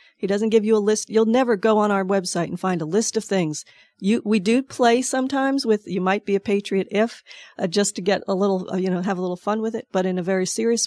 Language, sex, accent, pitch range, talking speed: English, female, American, 180-205 Hz, 275 wpm